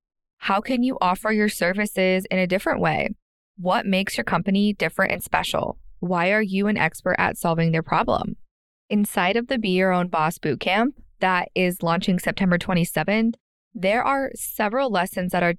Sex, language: female, English